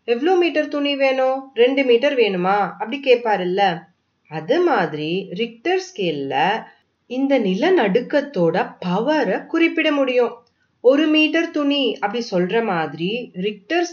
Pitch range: 200-290 Hz